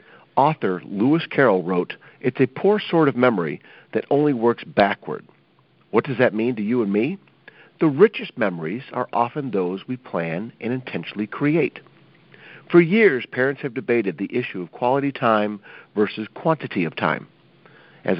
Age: 50-69